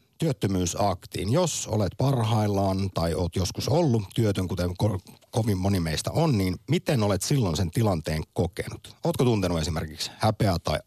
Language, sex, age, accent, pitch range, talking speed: Finnish, male, 50-69, native, 90-120 Hz, 150 wpm